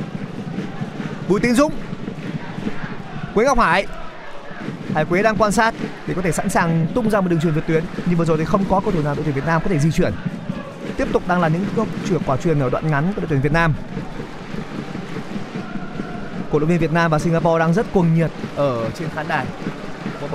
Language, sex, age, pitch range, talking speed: Vietnamese, male, 20-39, 165-200 Hz, 215 wpm